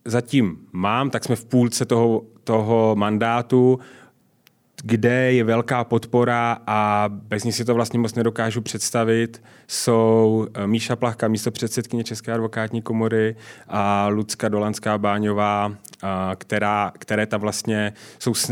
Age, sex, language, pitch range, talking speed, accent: 30-49, male, Czech, 110-120 Hz, 110 wpm, native